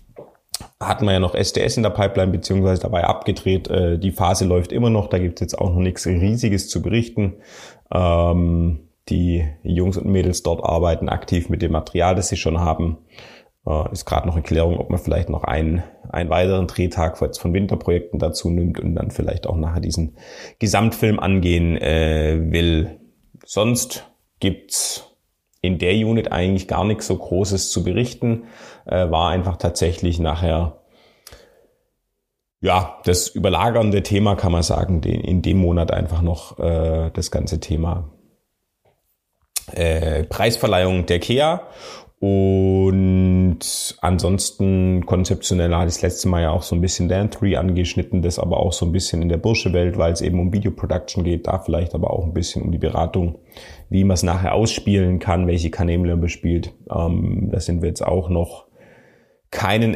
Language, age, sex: German, 30-49, male